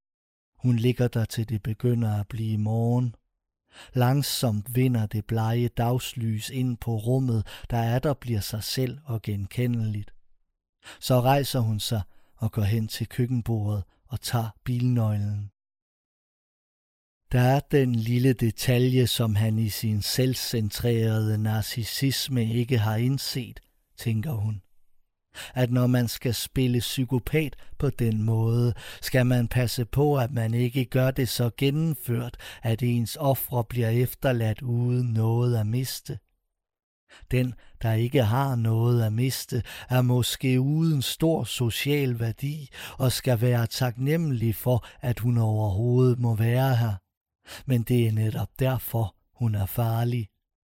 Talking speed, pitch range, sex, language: 135 wpm, 110-125 Hz, male, Danish